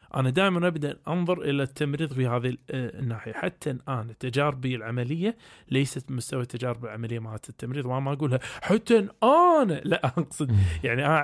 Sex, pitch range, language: male, 125-150 Hz, Arabic